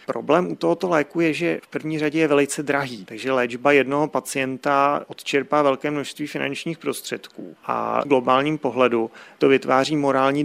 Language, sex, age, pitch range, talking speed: Czech, male, 30-49, 120-135 Hz, 160 wpm